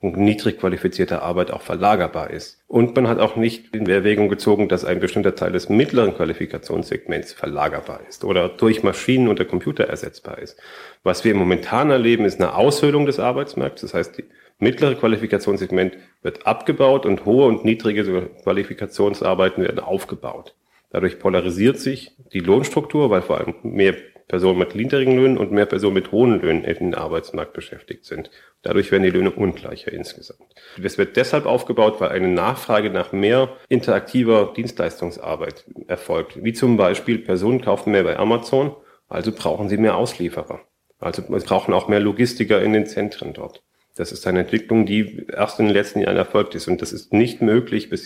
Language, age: German, 40-59